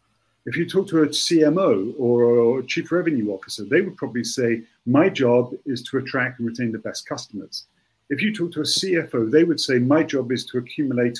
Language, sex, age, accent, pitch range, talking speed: English, male, 50-69, British, 115-145 Hz, 210 wpm